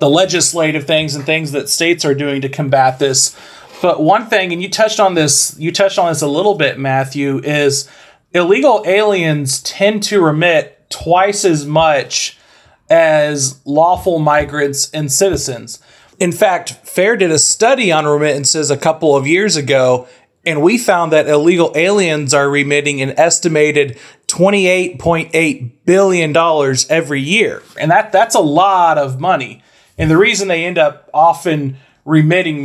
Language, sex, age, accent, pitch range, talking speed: English, male, 30-49, American, 140-175 Hz, 155 wpm